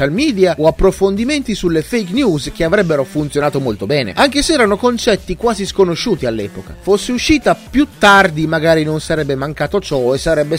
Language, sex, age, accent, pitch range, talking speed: Italian, male, 30-49, native, 150-235 Hz, 165 wpm